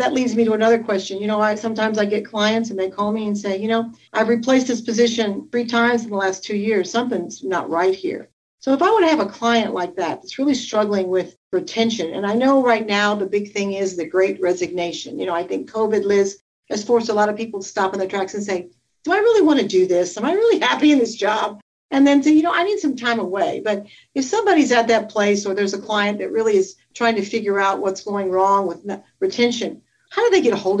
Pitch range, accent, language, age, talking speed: 200-255 Hz, American, English, 50-69, 265 wpm